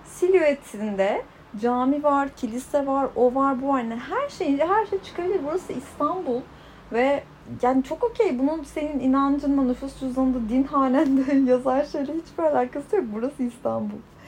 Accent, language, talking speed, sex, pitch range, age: native, Turkish, 145 wpm, female, 235-300 Hz, 30-49